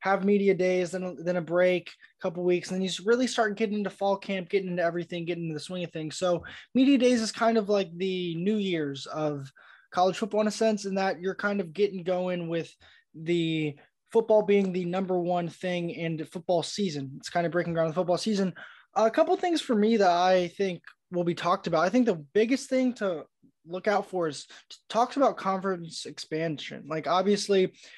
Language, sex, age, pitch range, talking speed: English, male, 20-39, 175-205 Hz, 225 wpm